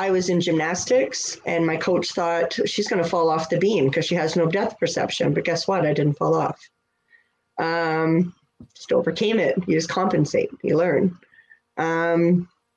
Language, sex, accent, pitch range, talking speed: English, female, American, 165-200 Hz, 180 wpm